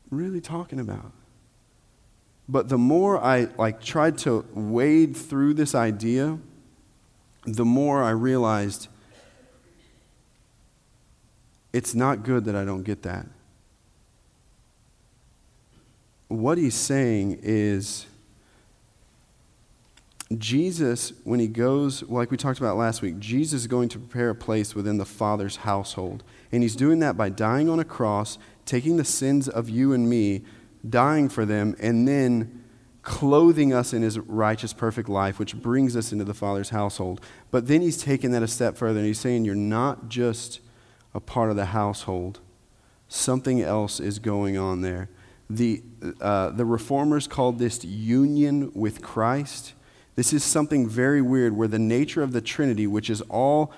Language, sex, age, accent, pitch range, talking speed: English, male, 40-59, American, 105-135 Hz, 150 wpm